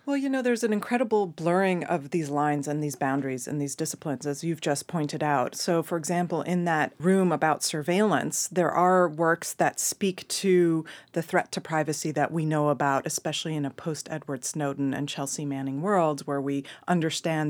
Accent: American